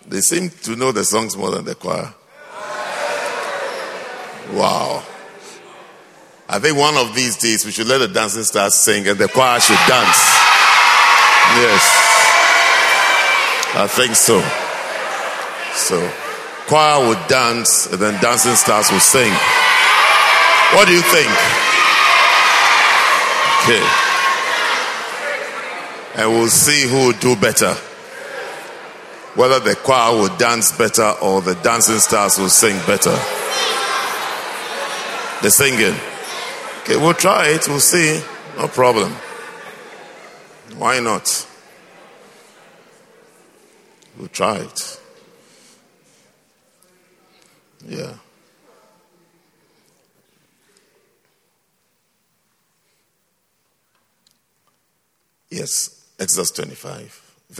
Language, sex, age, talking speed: English, male, 50-69, 90 wpm